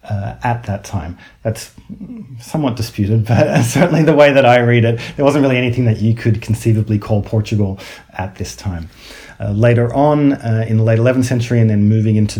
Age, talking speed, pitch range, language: 30-49, 200 wpm, 105-120 Hz, English